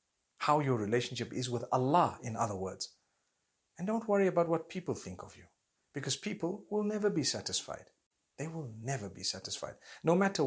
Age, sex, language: 50-69, male, English